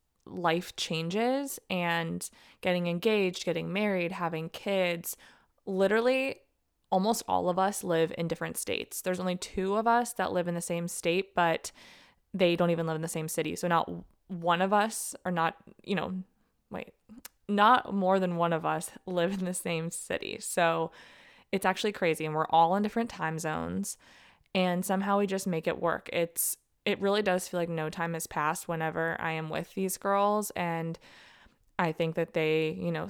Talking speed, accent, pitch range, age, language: 180 wpm, American, 165-190 Hz, 20-39, English